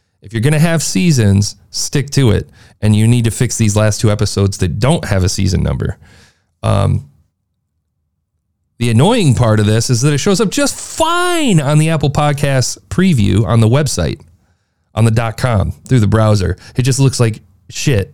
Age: 30-49